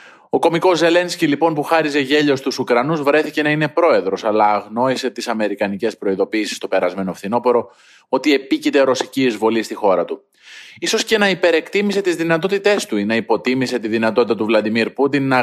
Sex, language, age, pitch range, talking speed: male, Greek, 20-39, 110-155 Hz, 170 wpm